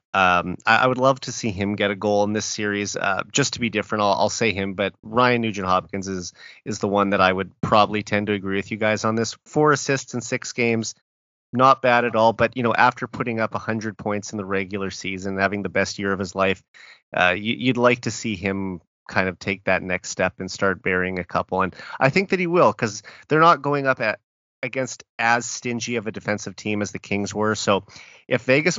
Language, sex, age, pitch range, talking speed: English, male, 30-49, 100-130 Hz, 235 wpm